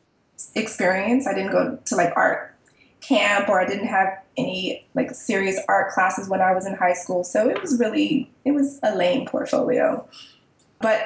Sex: female